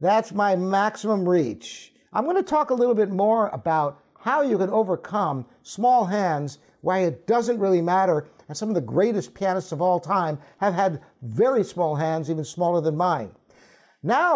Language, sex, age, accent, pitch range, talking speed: English, male, 50-69, American, 165-225 Hz, 180 wpm